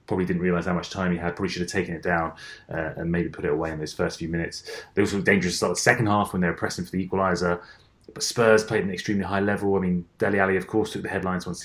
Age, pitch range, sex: 30-49, 85-105 Hz, male